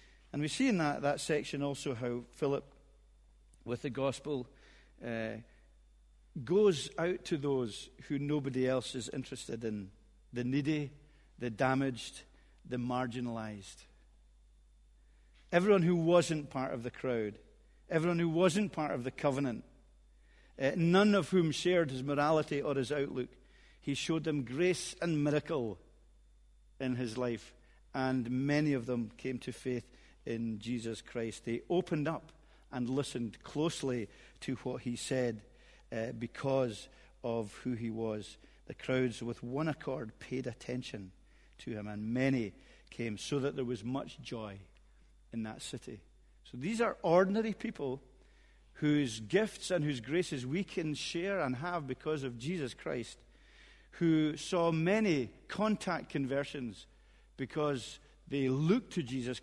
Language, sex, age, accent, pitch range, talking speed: English, male, 50-69, British, 115-150 Hz, 140 wpm